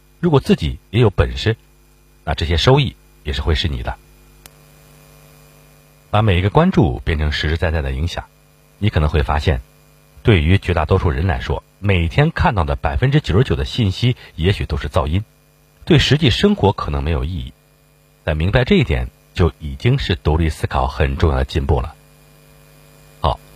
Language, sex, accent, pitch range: Chinese, male, native, 75-105 Hz